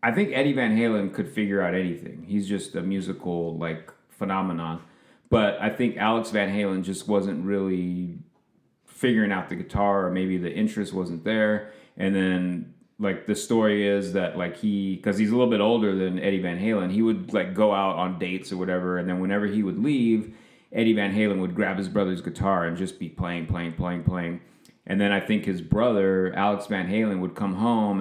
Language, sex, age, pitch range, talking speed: English, male, 30-49, 90-105 Hz, 205 wpm